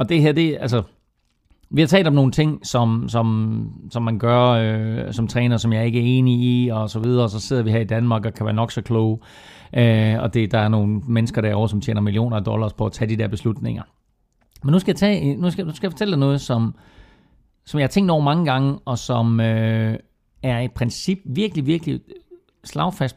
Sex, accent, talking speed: male, native, 235 wpm